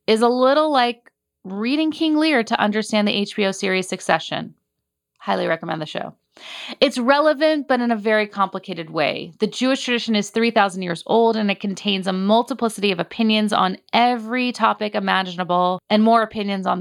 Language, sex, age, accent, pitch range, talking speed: English, female, 30-49, American, 200-255 Hz, 170 wpm